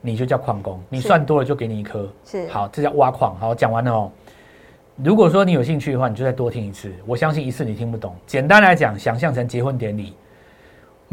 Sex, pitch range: male, 110-170 Hz